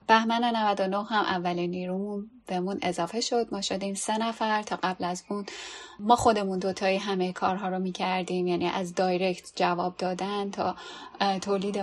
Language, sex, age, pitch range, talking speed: Persian, female, 10-29, 190-230 Hz, 150 wpm